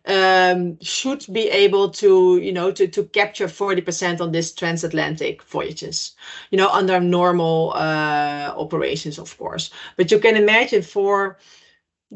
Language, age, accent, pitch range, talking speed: English, 30-49, Dutch, 175-205 Hz, 150 wpm